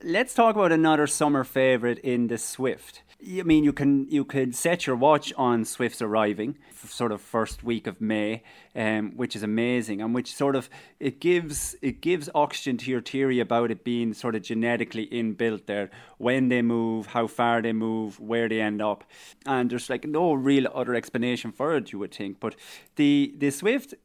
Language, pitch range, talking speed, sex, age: English, 110-140 Hz, 195 wpm, male, 30-49